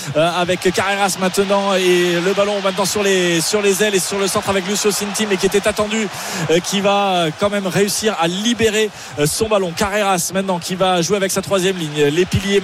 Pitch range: 190-225 Hz